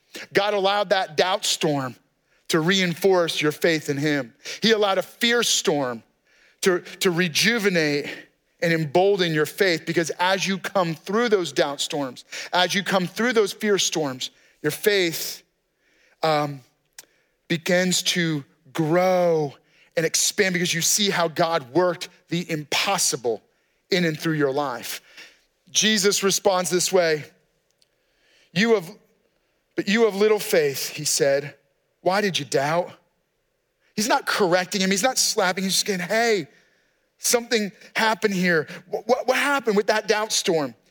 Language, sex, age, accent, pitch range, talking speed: English, male, 40-59, American, 165-210 Hz, 145 wpm